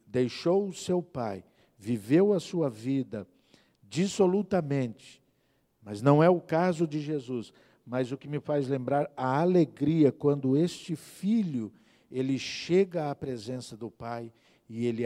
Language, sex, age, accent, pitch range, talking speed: Portuguese, male, 50-69, Brazilian, 120-170 Hz, 140 wpm